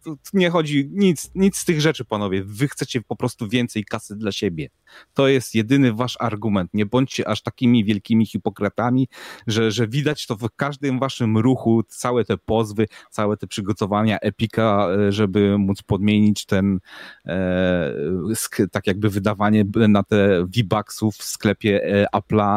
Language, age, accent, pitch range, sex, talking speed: Polish, 30-49, native, 100-120 Hz, male, 155 wpm